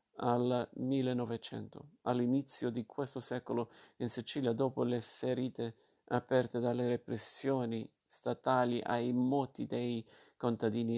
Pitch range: 115-125 Hz